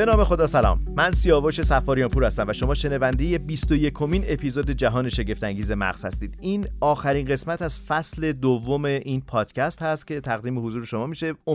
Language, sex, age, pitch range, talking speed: Persian, male, 40-59, 110-145 Hz, 165 wpm